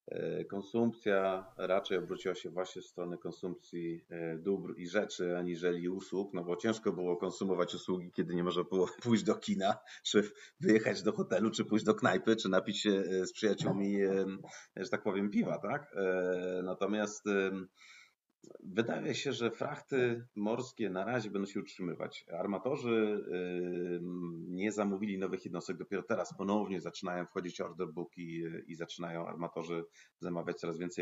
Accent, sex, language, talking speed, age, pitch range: native, male, Polish, 145 wpm, 30-49, 85-100 Hz